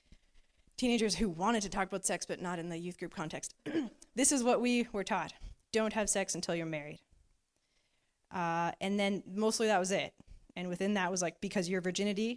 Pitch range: 170-210 Hz